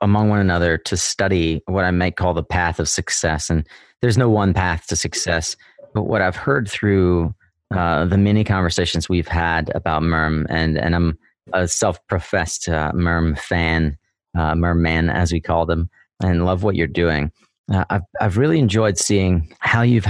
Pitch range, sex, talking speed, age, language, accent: 85-100 Hz, male, 180 wpm, 30-49, English, American